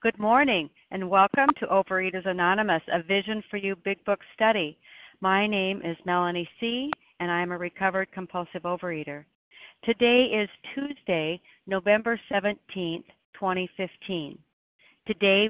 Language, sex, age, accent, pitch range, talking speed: English, female, 60-79, American, 175-220 Hz, 125 wpm